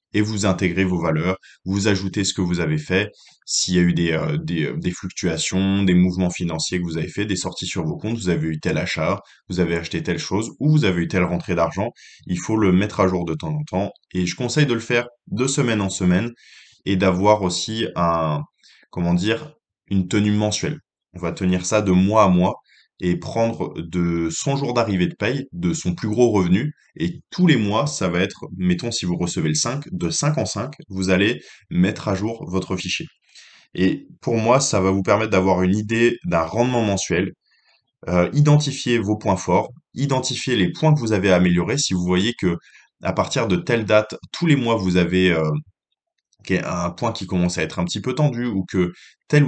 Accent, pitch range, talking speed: French, 90-120 Hz, 215 wpm